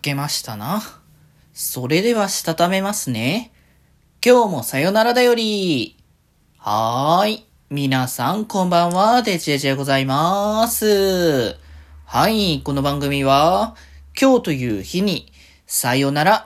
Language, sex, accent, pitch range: Japanese, male, native, 115-180 Hz